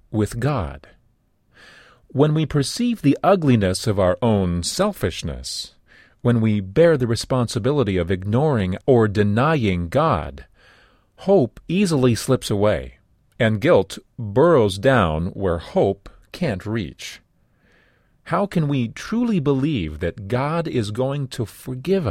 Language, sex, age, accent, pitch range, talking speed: English, male, 40-59, American, 100-145 Hz, 120 wpm